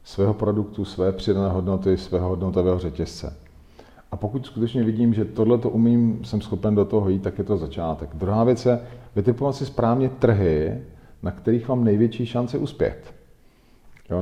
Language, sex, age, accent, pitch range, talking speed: Czech, male, 40-59, native, 95-115 Hz, 165 wpm